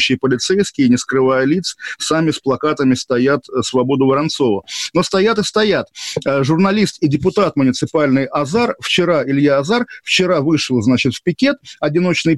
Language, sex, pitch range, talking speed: Russian, male, 135-170 Hz, 135 wpm